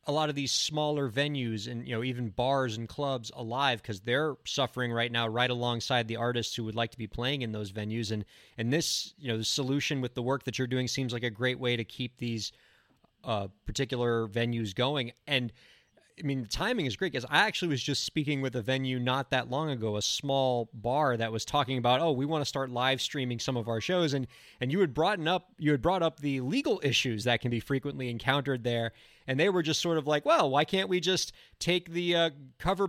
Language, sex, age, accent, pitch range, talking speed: English, male, 30-49, American, 125-160 Hz, 235 wpm